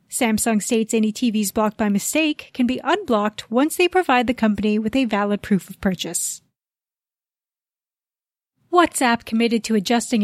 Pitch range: 220-295 Hz